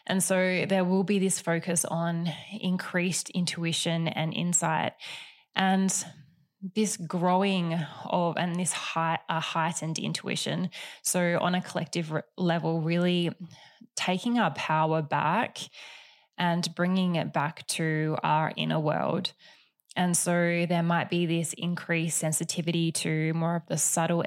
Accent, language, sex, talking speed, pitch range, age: Australian, English, female, 125 wpm, 165-185 Hz, 10-29